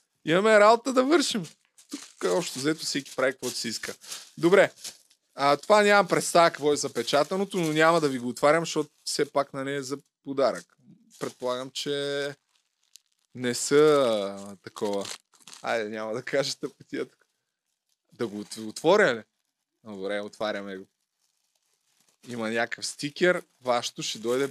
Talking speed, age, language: 140 wpm, 20-39, Bulgarian